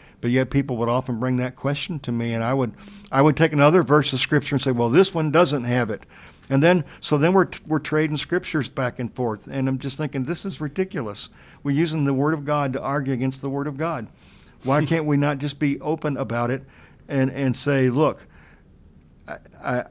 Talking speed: 225 wpm